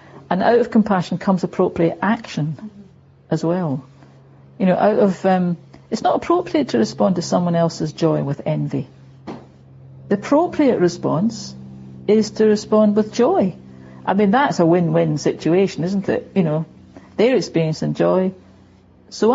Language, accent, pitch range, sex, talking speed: English, British, 145-215 Hz, female, 145 wpm